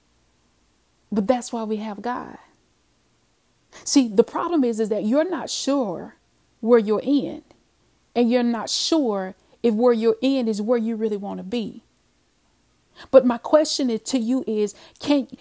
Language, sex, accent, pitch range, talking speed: English, female, American, 225-265 Hz, 160 wpm